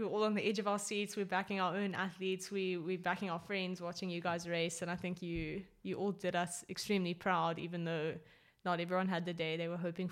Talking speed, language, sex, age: 250 wpm, English, female, 20-39